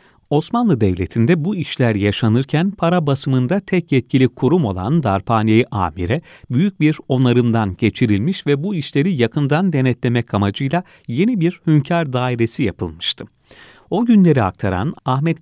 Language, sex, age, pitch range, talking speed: Turkish, male, 40-59, 110-155 Hz, 125 wpm